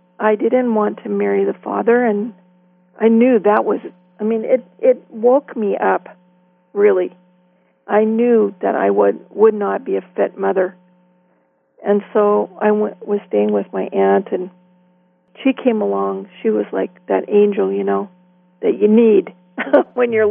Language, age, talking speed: English, 50-69, 165 wpm